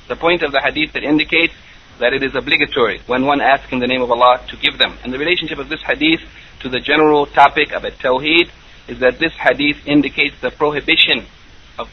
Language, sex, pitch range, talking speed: English, male, 135-160 Hz, 215 wpm